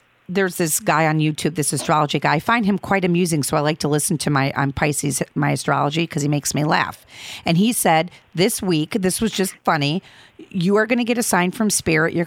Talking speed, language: 235 wpm, English